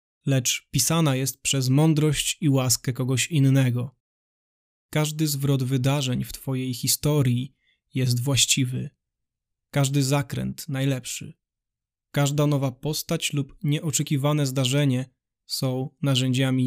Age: 20-39